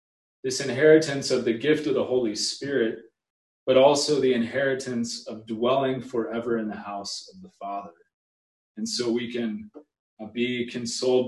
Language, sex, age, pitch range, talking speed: English, male, 30-49, 110-130 Hz, 155 wpm